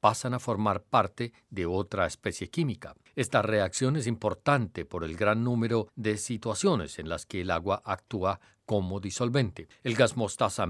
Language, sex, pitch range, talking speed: Spanish, male, 100-135 Hz, 165 wpm